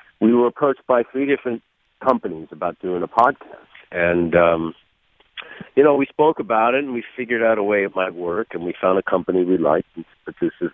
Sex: male